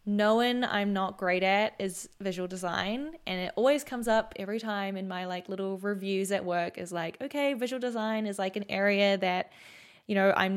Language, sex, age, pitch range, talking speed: English, female, 10-29, 185-225 Hz, 200 wpm